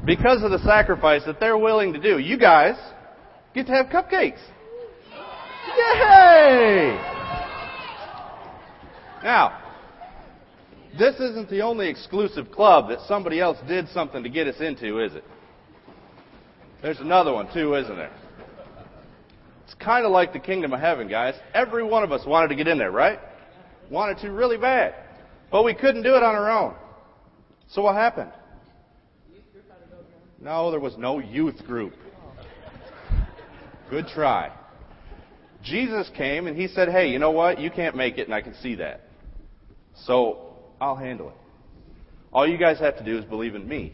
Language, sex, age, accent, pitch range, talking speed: English, male, 40-59, American, 125-215 Hz, 155 wpm